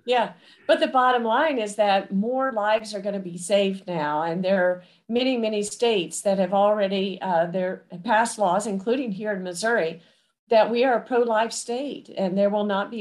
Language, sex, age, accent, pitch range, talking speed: English, female, 50-69, American, 195-230 Hz, 205 wpm